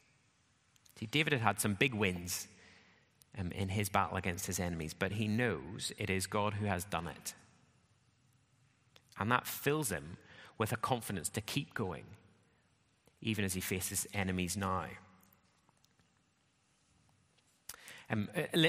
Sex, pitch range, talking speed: male, 95-125 Hz, 130 wpm